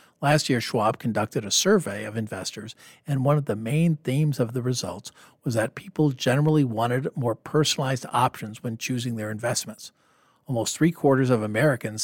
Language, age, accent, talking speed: English, 50-69, American, 165 wpm